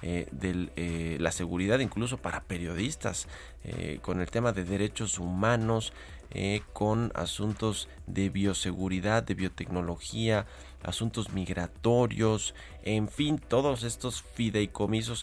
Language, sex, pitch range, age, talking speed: Spanish, male, 90-115 Hz, 30-49, 110 wpm